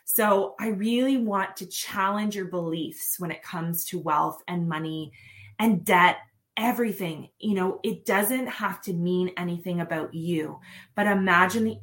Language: English